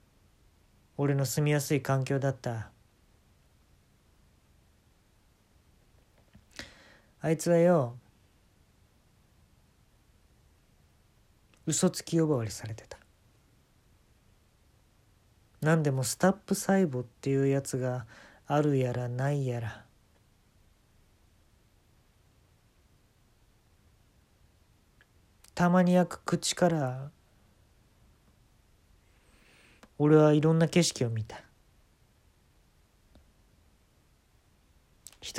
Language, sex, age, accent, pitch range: Japanese, male, 40-59, native, 100-145 Hz